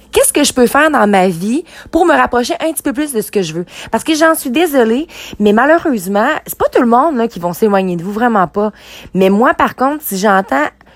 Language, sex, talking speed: French, female, 250 wpm